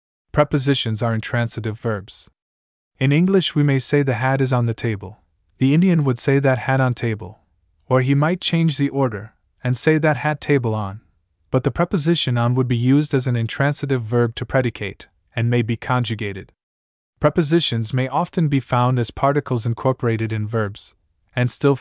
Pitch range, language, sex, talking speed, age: 110-140 Hz, English, male, 175 wpm, 20-39